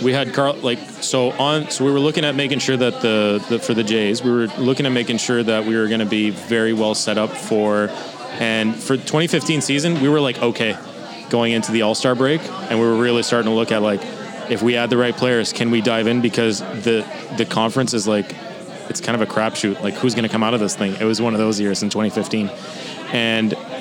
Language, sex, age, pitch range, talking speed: English, male, 20-39, 115-140 Hz, 245 wpm